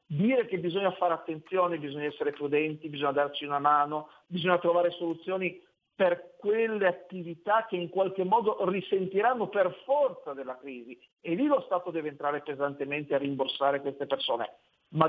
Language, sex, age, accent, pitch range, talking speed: Italian, male, 50-69, native, 155-205 Hz, 155 wpm